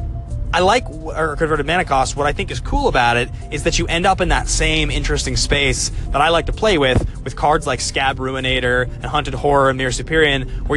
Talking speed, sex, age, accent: 230 wpm, male, 20-39, American